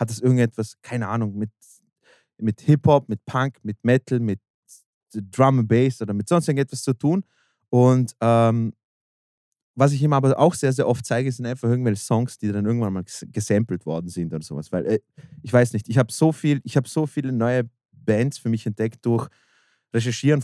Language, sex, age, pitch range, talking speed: German, male, 20-39, 110-140 Hz, 190 wpm